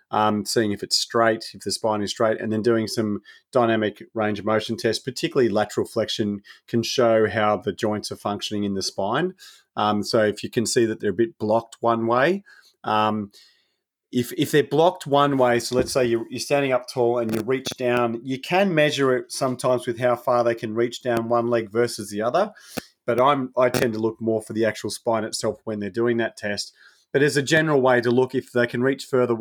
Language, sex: English, male